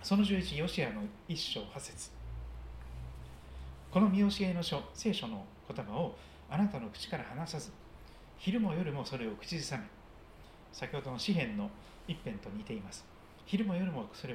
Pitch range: 120-200 Hz